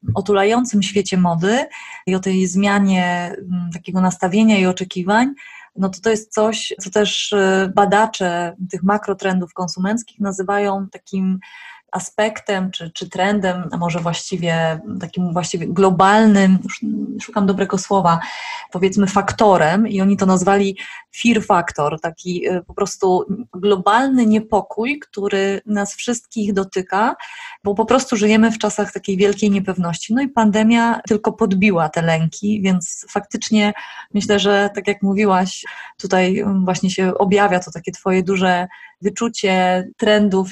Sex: female